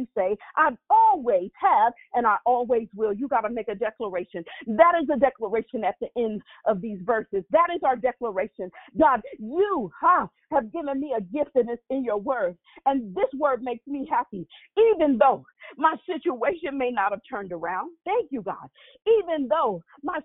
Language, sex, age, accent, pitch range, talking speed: English, female, 40-59, American, 240-315 Hz, 180 wpm